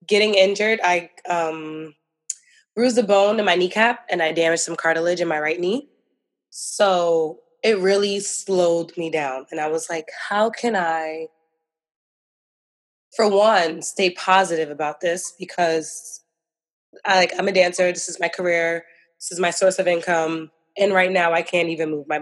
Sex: female